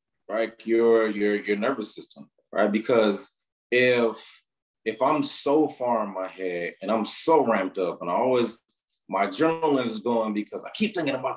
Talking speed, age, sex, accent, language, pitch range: 175 wpm, 30-49, male, American, English, 95-125 Hz